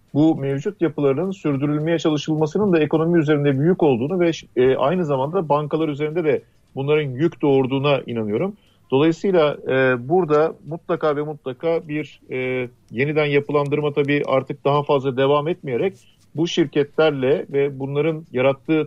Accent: native